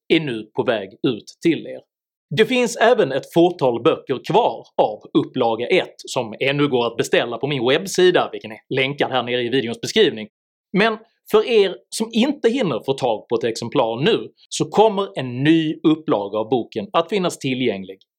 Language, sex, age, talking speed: Swedish, male, 30-49, 180 wpm